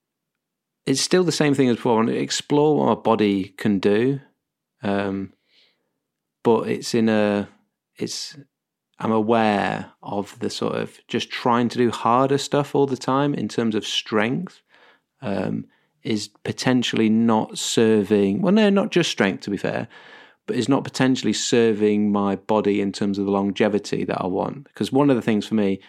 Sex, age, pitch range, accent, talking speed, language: male, 30-49, 100-120 Hz, British, 170 wpm, English